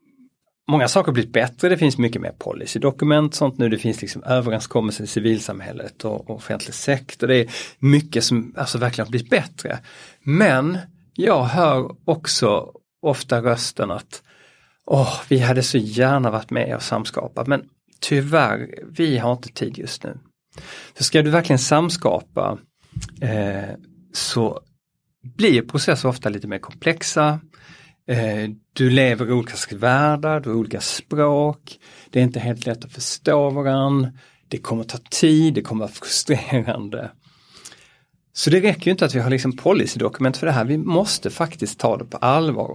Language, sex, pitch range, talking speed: Swedish, male, 120-155 Hz, 160 wpm